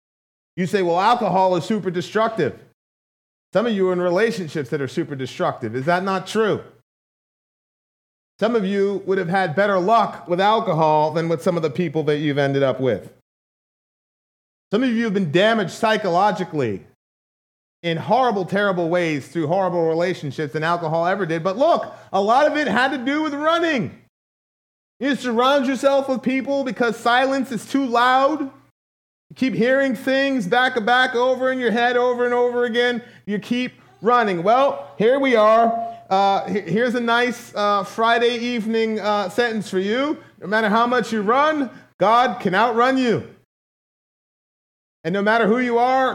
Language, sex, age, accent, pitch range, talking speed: English, male, 30-49, American, 190-245 Hz, 170 wpm